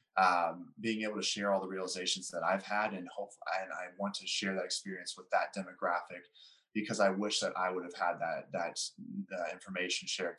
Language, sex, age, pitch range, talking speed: English, male, 20-39, 90-105 Hz, 200 wpm